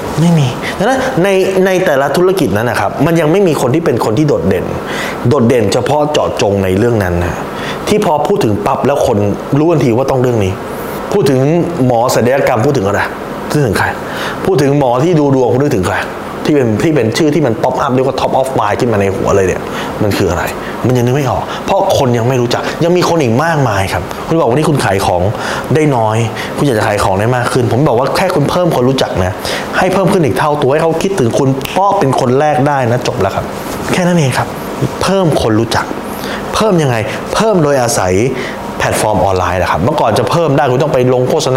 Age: 20-39